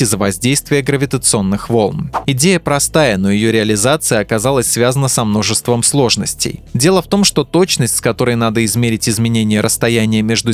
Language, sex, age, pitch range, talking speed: Russian, male, 20-39, 110-140 Hz, 150 wpm